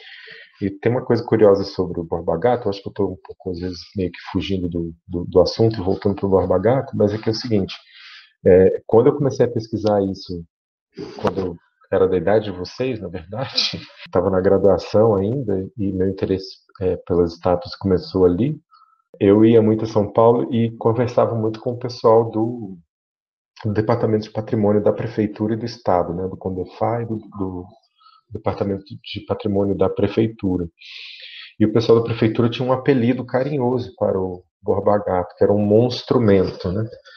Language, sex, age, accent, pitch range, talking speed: Portuguese, male, 40-59, Brazilian, 95-120 Hz, 180 wpm